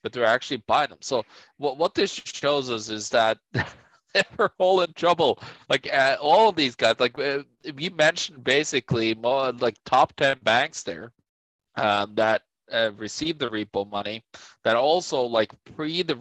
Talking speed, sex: 170 wpm, male